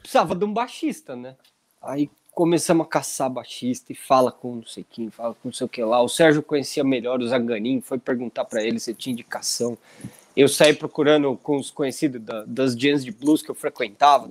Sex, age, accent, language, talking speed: male, 20-39, Brazilian, Portuguese, 210 wpm